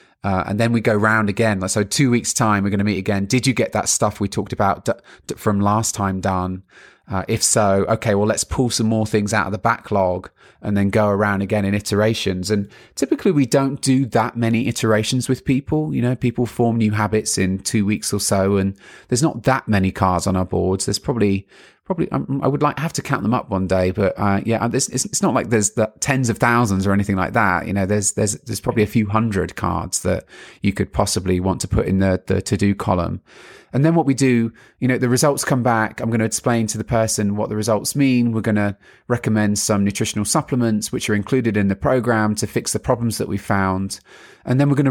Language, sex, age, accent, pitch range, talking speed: English, male, 30-49, British, 100-120 Hz, 240 wpm